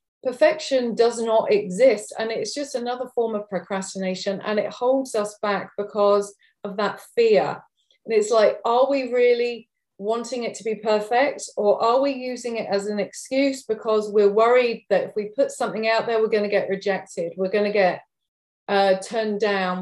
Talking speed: 185 wpm